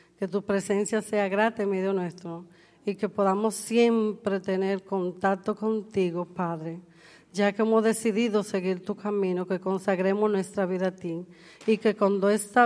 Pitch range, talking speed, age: 185-220 Hz, 155 wpm, 40-59